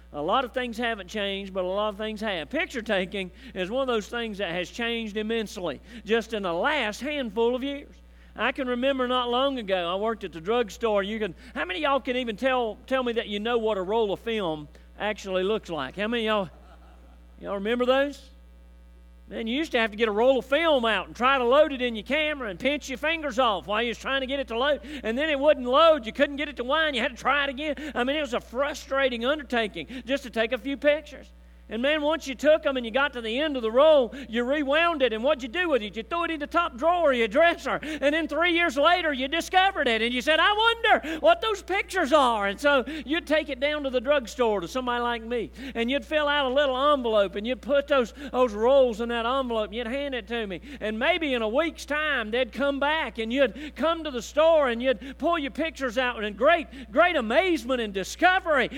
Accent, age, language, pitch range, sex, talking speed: American, 40-59, English, 225-295 Hz, male, 255 wpm